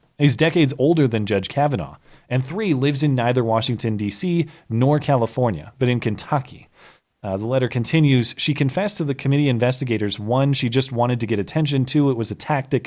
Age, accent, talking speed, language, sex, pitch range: 30-49, American, 185 wpm, English, male, 105-140 Hz